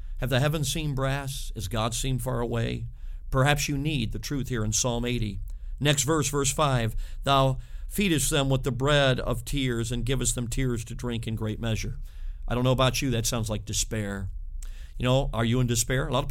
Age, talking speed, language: 50-69, 215 wpm, English